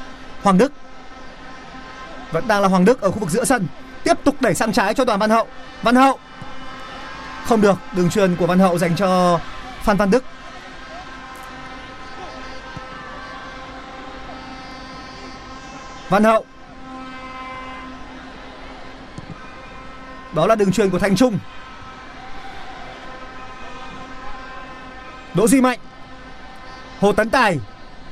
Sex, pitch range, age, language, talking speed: male, 195-260 Hz, 30-49, Vietnamese, 105 wpm